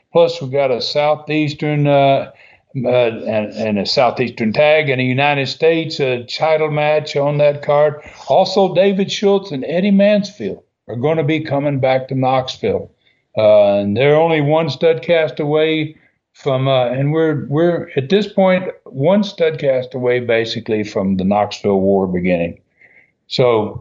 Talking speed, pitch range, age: 160 wpm, 110-155 Hz, 60-79